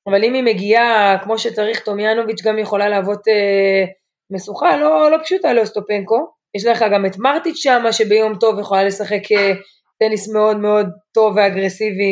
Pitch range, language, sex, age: 190-225 Hz, Hebrew, female, 20-39